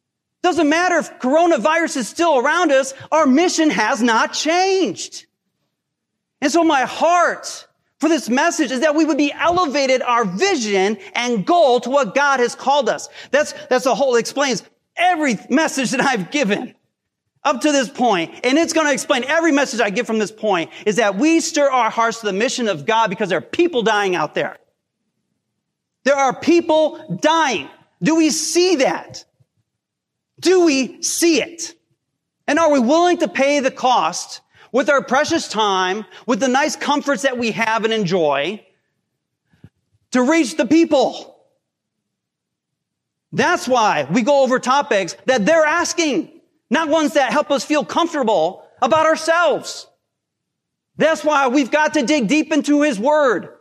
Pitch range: 250-320 Hz